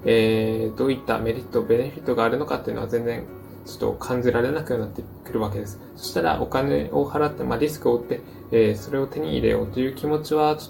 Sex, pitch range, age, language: male, 110-150 Hz, 20-39, Japanese